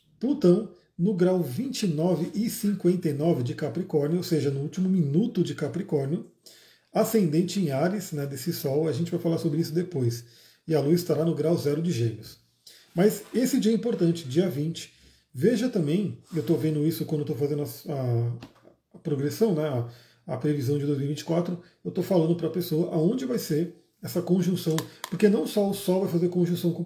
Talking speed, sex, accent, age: 185 wpm, male, Brazilian, 40-59